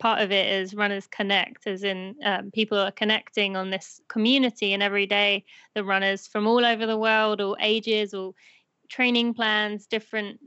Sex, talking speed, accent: female, 180 wpm, British